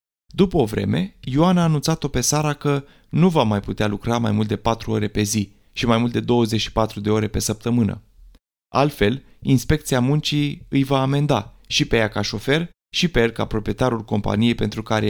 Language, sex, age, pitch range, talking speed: Romanian, male, 30-49, 110-150 Hz, 195 wpm